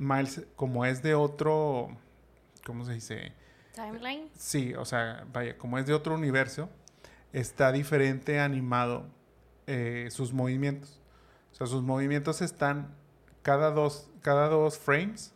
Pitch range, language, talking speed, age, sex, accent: 125-150 Hz, Spanish, 135 wpm, 30-49, male, Mexican